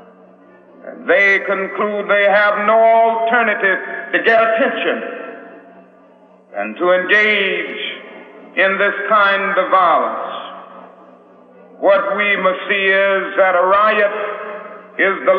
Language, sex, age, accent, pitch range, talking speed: English, male, 60-79, American, 190-215 Hz, 105 wpm